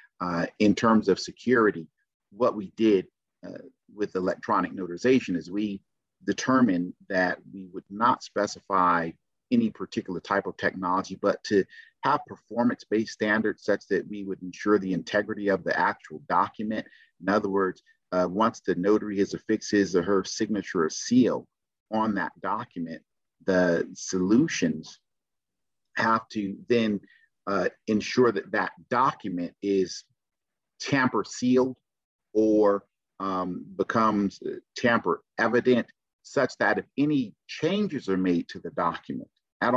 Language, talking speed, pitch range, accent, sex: English, 135 wpm, 95-115 Hz, American, male